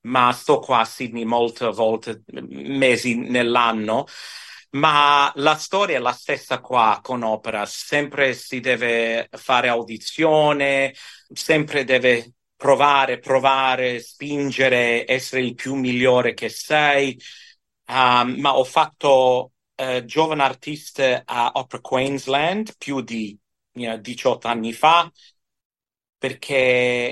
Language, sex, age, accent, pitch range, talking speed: Italian, male, 50-69, native, 120-135 Hz, 115 wpm